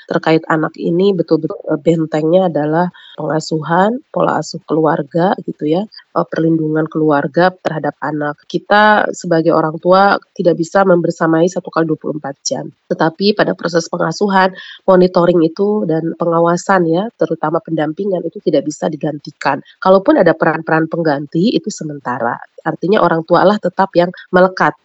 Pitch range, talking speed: 155-190 Hz, 135 wpm